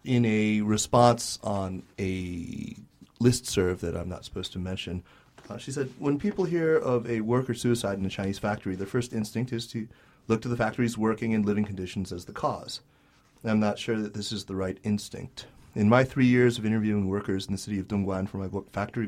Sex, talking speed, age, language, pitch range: male, 210 wpm, 30-49, English, 95-120 Hz